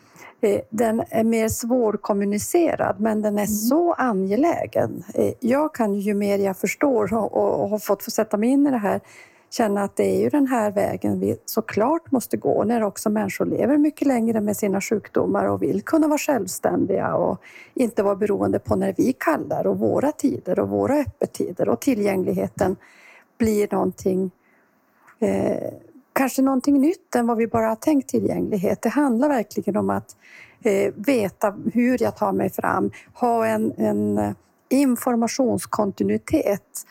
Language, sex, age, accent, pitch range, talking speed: Swedish, female, 40-59, native, 210-270 Hz, 155 wpm